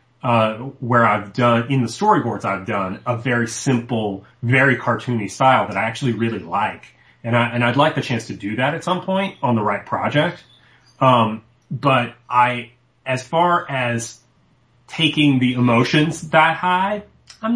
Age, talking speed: 30-49, 165 wpm